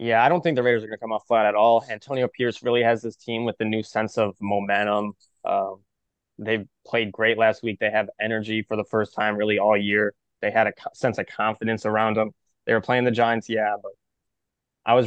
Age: 20-39